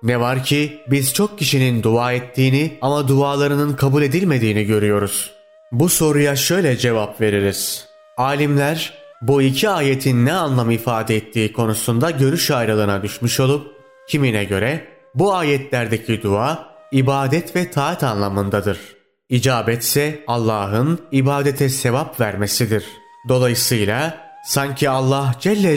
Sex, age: male, 30-49